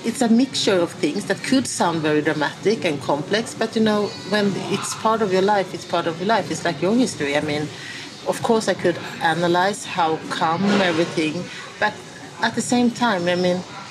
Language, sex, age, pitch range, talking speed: English, female, 40-59, 170-205 Hz, 205 wpm